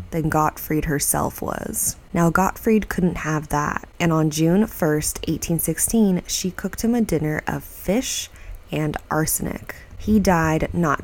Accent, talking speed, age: American, 140 wpm, 20-39